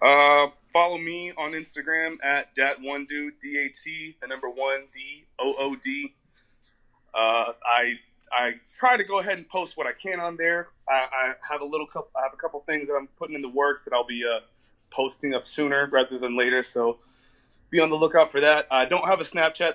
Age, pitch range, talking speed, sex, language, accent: 20-39, 130-165 Hz, 215 wpm, male, English, American